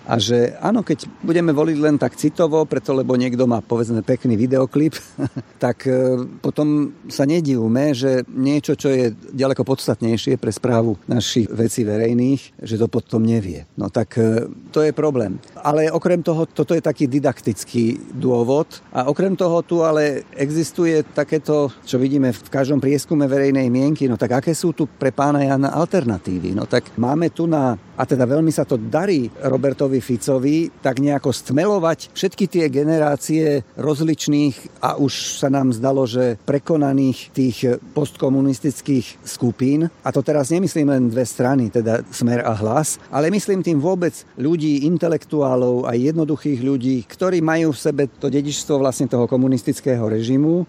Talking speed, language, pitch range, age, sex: 155 wpm, Slovak, 125-150 Hz, 50-69, male